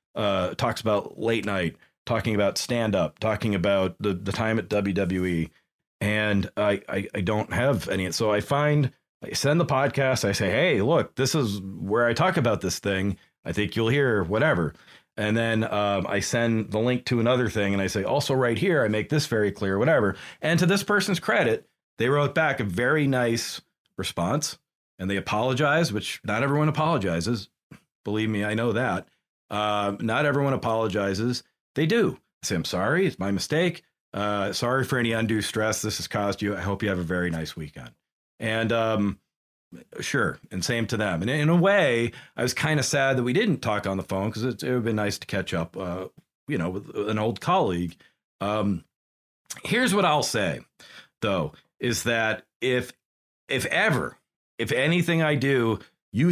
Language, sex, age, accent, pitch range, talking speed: English, male, 40-59, American, 100-130 Hz, 190 wpm